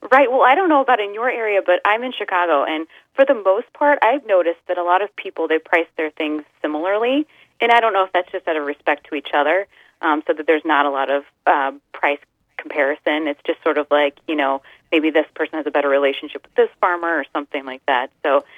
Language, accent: English, American